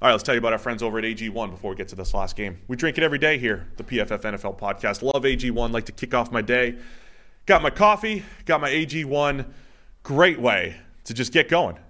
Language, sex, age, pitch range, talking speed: English, male, 30-49, 105-135 Hz, 240 wpm